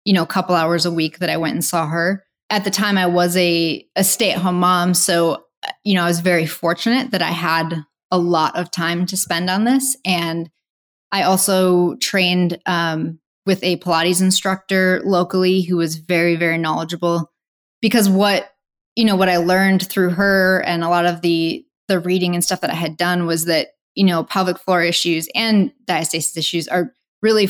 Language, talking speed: English, 195 wpm